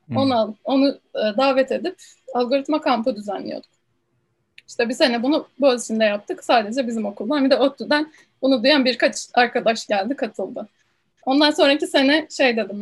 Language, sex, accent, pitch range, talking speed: Turkish, female, native, 235-285 Hz, 145 wpm